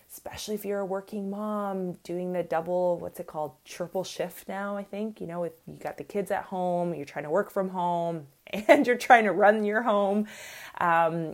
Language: English